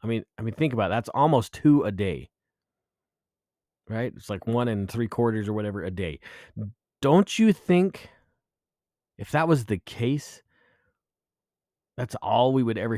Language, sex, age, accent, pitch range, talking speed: English, male, 30-49, American, 95-120 Hz, 165 wpm